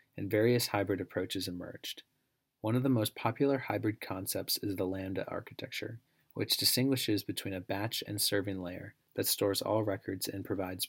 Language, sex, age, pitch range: English, male, 30-49, 95-110 Hz